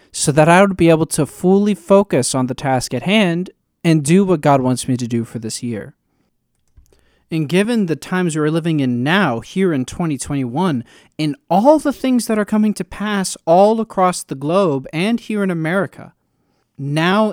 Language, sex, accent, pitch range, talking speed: English, male, American, 130-190 Hz, 190 wpm